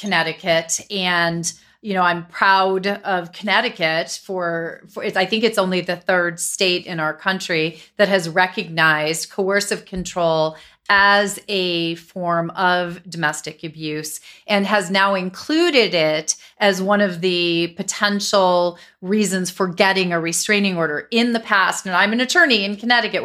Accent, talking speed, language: American, 145 wpm, English